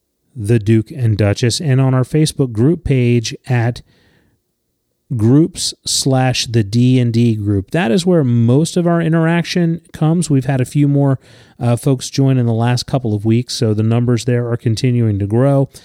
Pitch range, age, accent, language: 115-145 Hz, 30-49, American, English